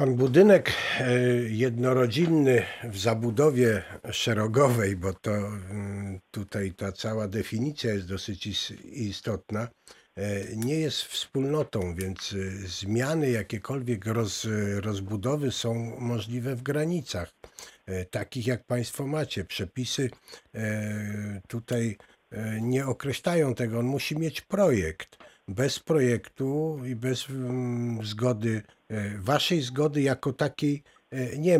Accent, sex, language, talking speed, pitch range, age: native, male, Polish, 95 wpm, 115-150 Hz, 50-69